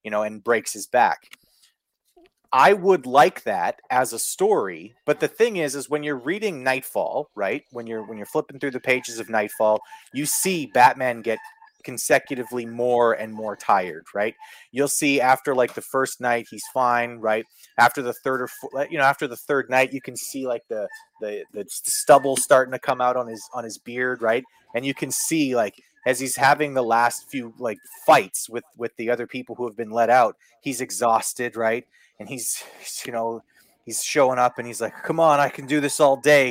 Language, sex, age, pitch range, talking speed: English, male, 30-49, 115-150 Hz, 205 wpm